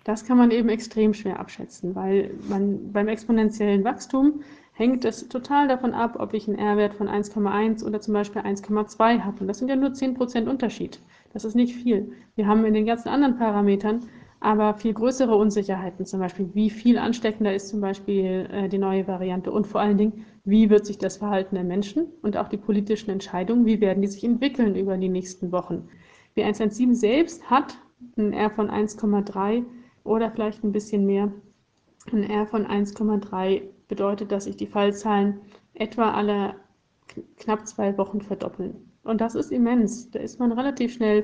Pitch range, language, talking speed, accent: 200-235 Hz, German, 180 wpm, German